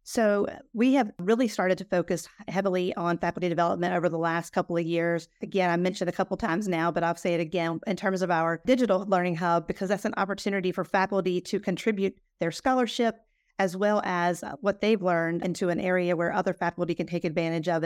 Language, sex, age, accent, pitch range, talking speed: English, female, 40-59, American, 175-200 Hz, 210 wpm